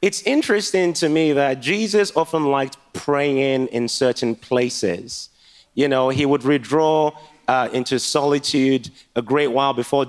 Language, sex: English, male